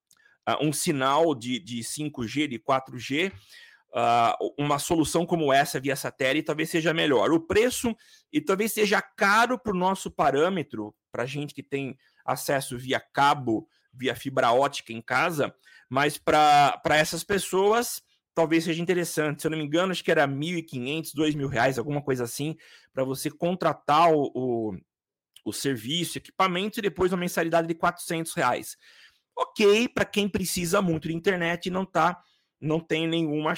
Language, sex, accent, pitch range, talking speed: Portuguese, male, Brazilian, 140-195 Hz, 155 wpm